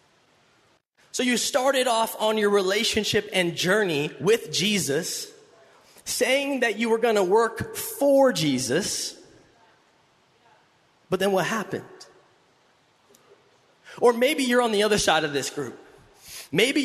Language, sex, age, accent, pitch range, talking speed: English, male, 20-39, American, 195-260 Hz, 125 wpm